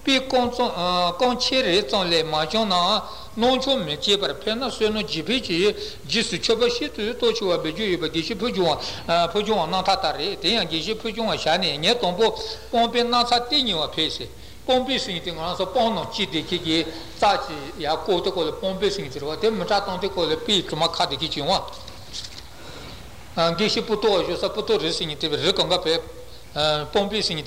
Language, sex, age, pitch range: Italian, male, 60-79, 170-230 Hz